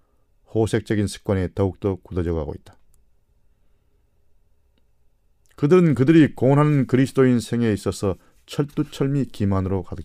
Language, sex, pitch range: Korean, male, 95-130 Hz